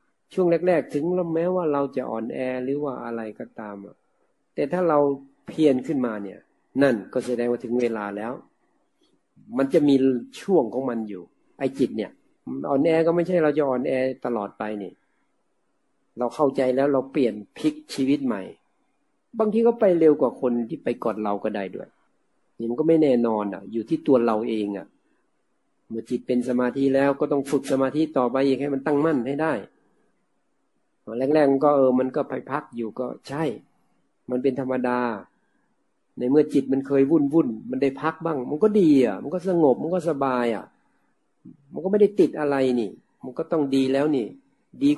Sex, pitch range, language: male, 125-160 Hz, Thai